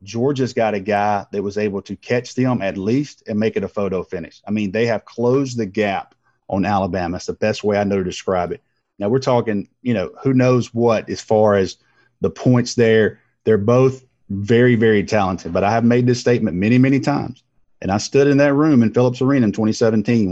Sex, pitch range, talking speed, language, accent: male, 100-125 Hz, 220 wpm, English, American